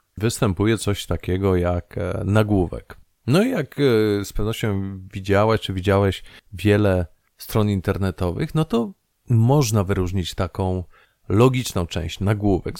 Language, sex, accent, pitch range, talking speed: Polish, male, native, 95-120 Hz, 115 wpm